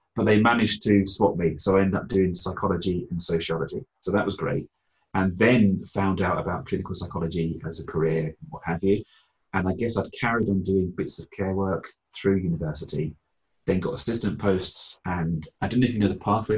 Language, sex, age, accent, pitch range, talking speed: English, male, 30-49, British, 90-100 Hz, 205 wpm